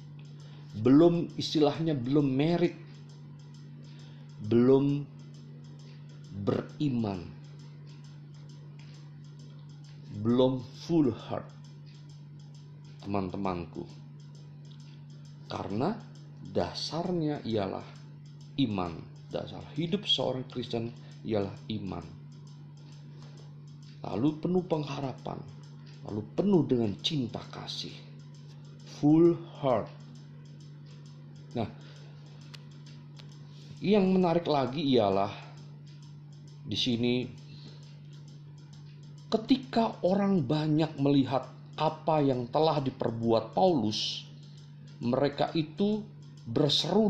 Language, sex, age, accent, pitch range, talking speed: Indonesian, male, 40-59, native, 135-150 Hz, 60 wpm